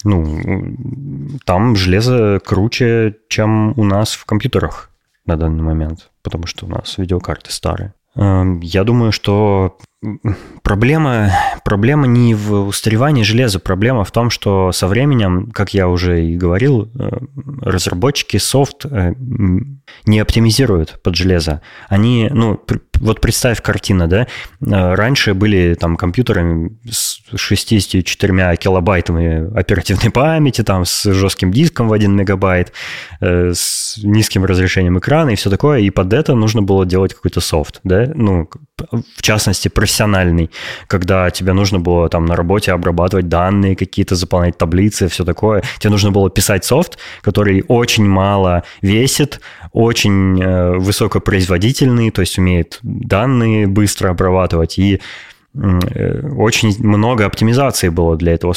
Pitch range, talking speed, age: 90-115 Hz, 125 wpm, 20-39